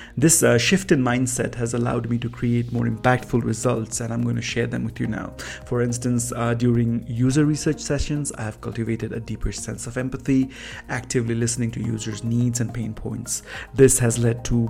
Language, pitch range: English, 115-125 Hz